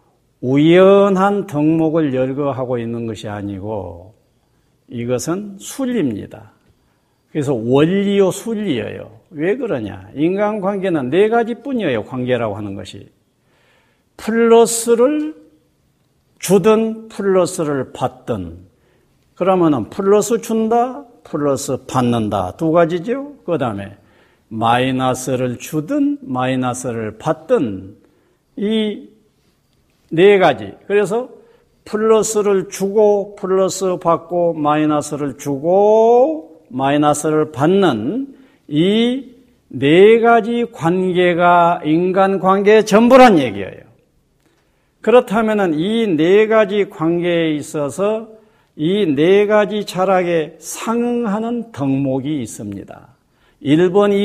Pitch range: 135-220 Hz